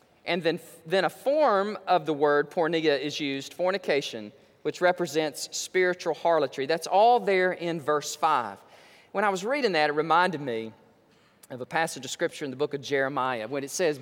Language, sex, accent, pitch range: English, male, American, 150-210 Hz